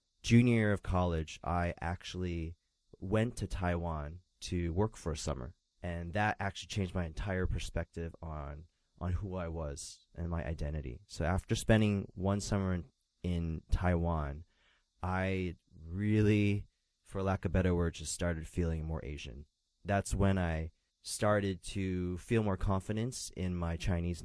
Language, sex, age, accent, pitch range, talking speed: English, male, 30-49, American, 80-95 Hz, 150 wpm